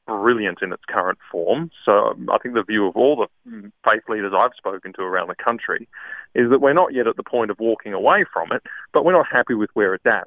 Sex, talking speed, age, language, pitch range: male, 245 wpm, 30-49, English, 110-140 Hz